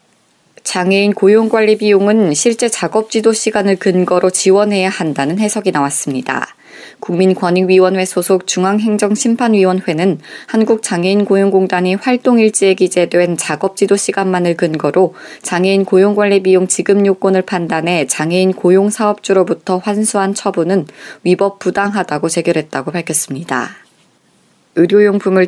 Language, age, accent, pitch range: Korean, 20-39, native, 175-200 Hz